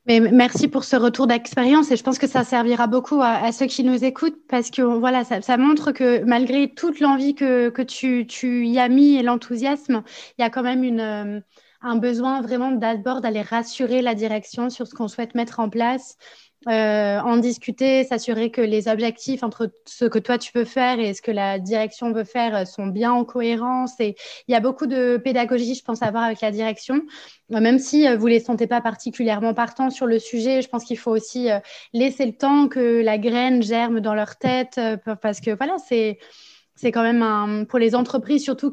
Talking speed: 210 wpm